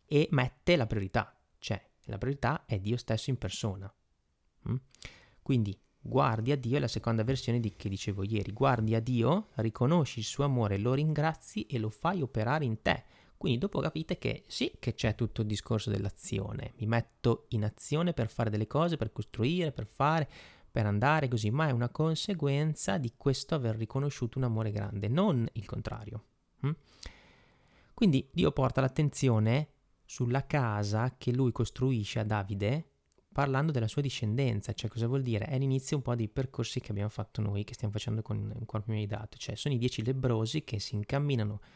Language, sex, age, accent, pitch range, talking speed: Italian, male, 30-49, native, 110-135 Hz, 180 wpm